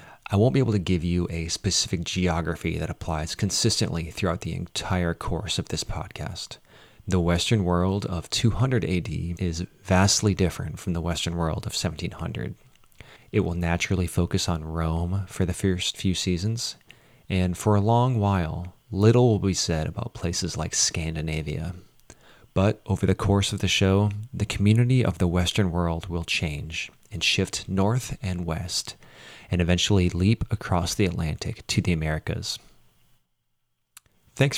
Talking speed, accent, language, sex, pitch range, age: 155 wpm, American, English, male, 90-110 Hz, 30-49